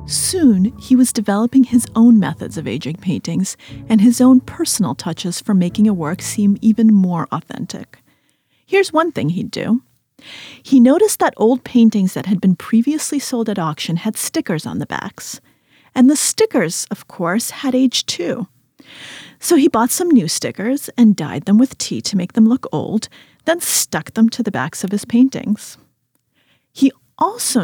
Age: 30-49